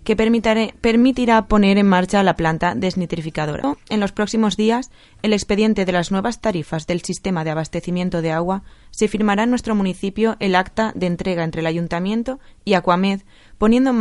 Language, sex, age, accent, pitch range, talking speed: Spanish, female, 20-39, Spanish, 170-210 Hz, 170 wpm